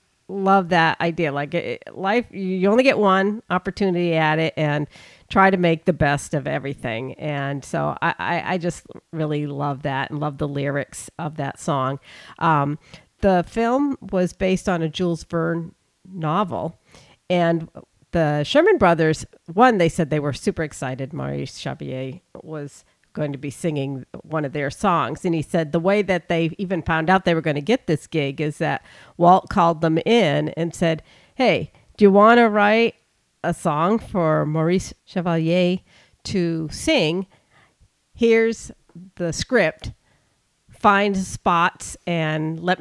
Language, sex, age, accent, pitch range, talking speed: English, female, 50-69, American, 155-190 Hz, 155 wpm